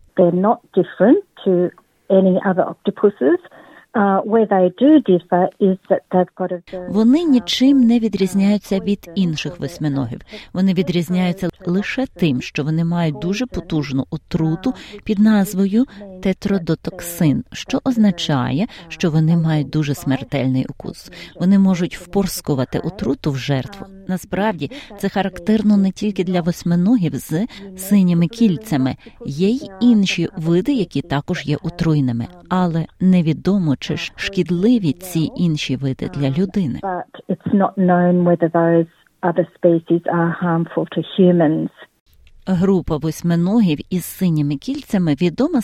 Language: Ukrainian